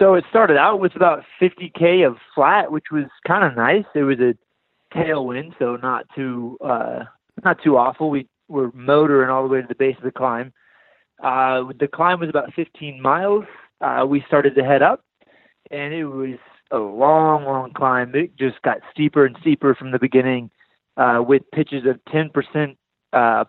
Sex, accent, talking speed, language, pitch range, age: male, American, 190 wpm, English, 130-155 Hz, 30-49